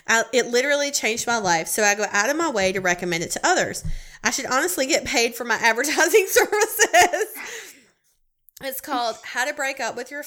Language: English